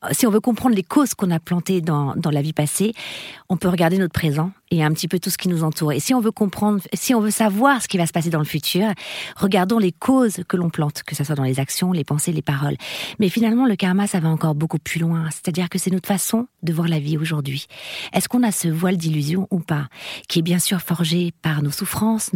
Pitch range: 165-210 Hz